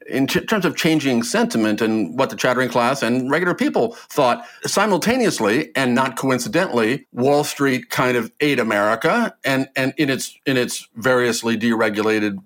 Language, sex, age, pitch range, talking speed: English, male, 50-69, 135-195 Hz, 160 wpm